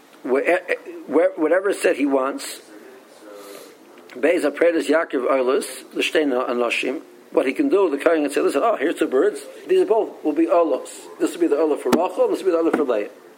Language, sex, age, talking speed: English, male, 60-79, 175 wpm